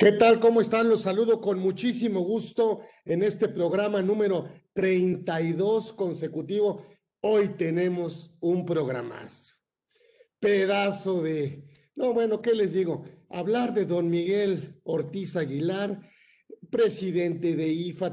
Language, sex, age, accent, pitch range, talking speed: Spanish, male, 50-69, Mexican, 155-190 Hz, 115 wpm